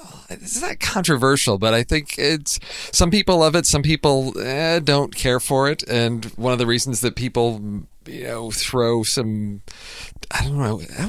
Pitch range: 105-130 Hz